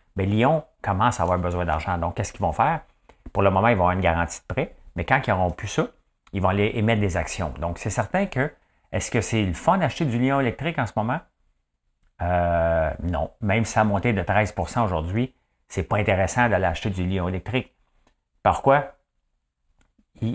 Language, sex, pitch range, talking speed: English, male, 90-120 Hz, 210 wpm